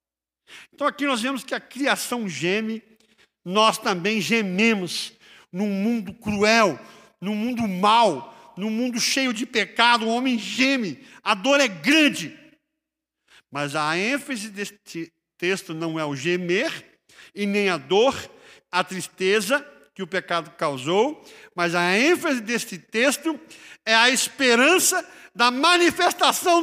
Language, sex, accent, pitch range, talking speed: Portuguese, male, Brazilian, 185-295 Hz, 130 wpm